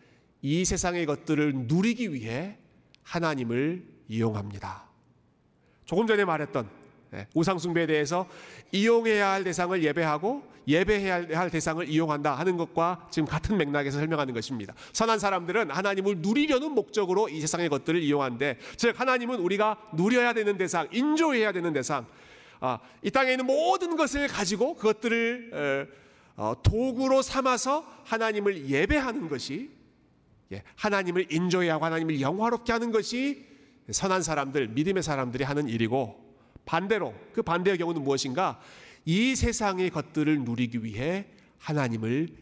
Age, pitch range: 40-59, 145-220 Hz